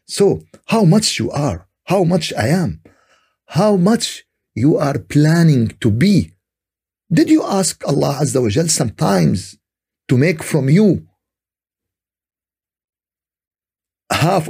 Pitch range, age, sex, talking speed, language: 95-150 Hz, 50-69, male, 120 wpm, Arabic